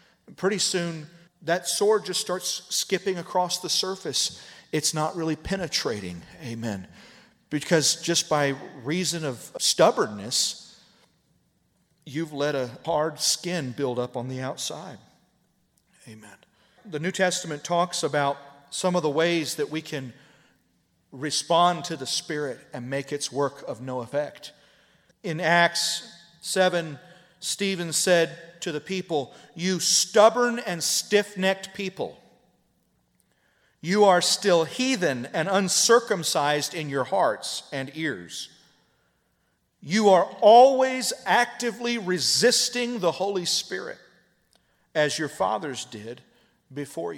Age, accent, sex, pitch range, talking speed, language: 40-59, American, male, 150-195 Hz, 115 wpm, English